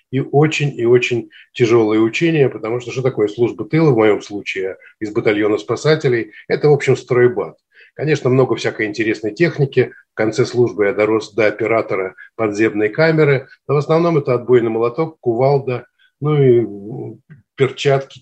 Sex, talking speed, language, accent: male, 150 wpm, Russian, native